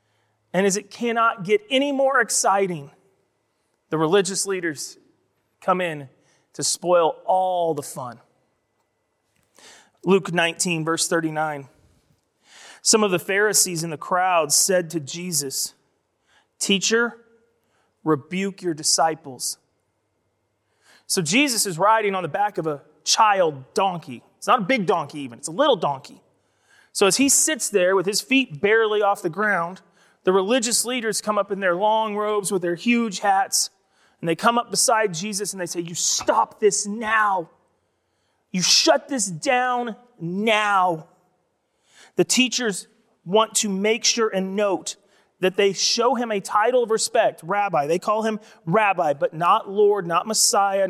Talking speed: 150 wpm